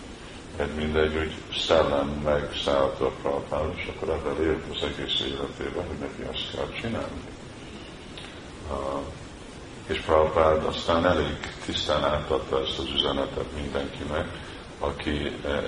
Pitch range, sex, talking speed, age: 70-80 Hz, male, 115 wpm, 50-69